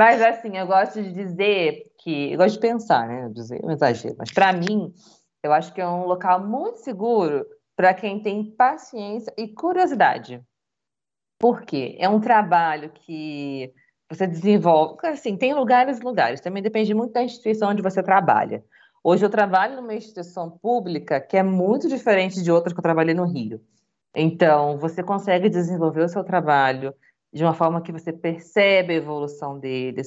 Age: 20-39